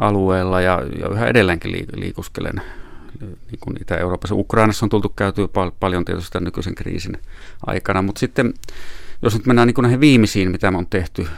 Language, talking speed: Finnish, 150 wpm